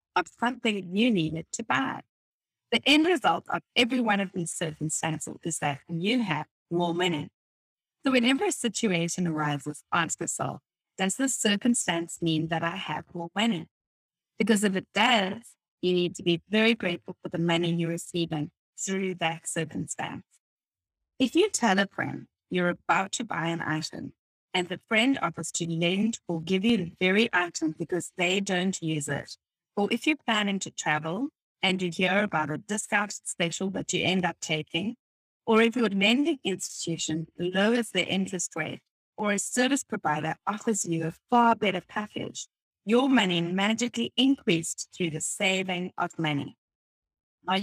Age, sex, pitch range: 30-49, female, 165-220 Hz